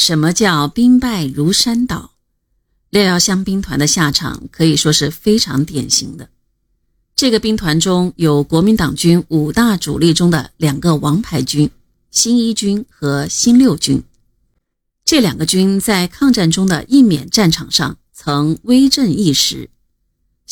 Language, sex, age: Chinese, female, 30-49